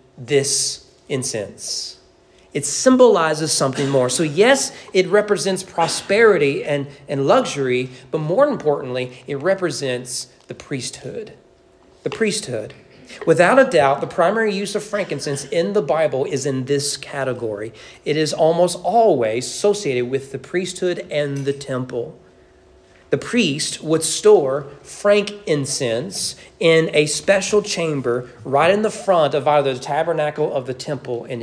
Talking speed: 135 wpm